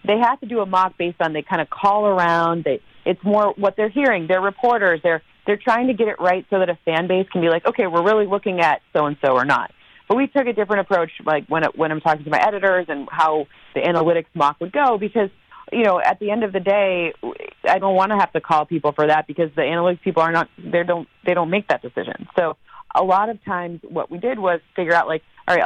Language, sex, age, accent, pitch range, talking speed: English, female, 30-49, American, 155-195 Hz, 265 wpm